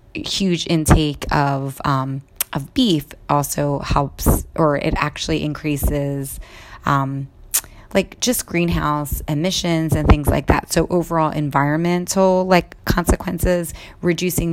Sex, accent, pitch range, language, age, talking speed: female, American, 140-160 Hz, English, 20-39, 110 wpm